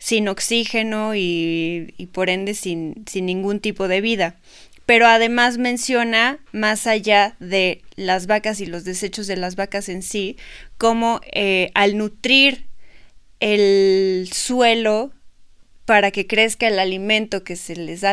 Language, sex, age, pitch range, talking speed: Spanish, female, 20-39, 185-220 Hz, 140 wpm